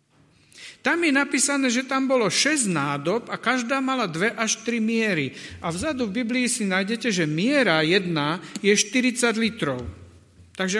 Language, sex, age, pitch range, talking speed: Slovak, male, 50-69, 150-220 Hz, 155 wpm